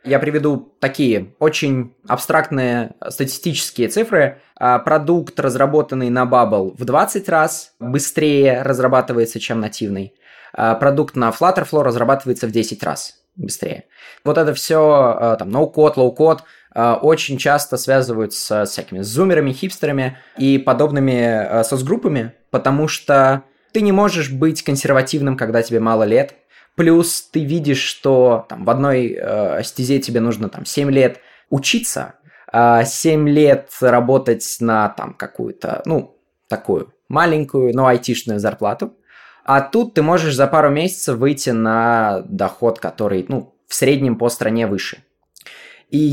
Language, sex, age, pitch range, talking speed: Russian, male, 20-39, 115-155 Hz, 125 wpm